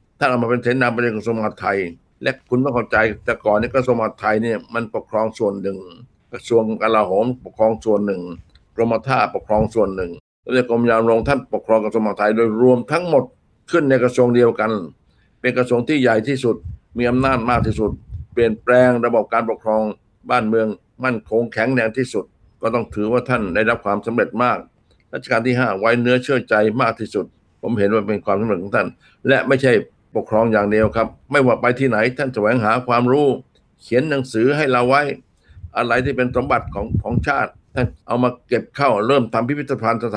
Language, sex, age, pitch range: Thai, male, 60-79, 110-125 Hz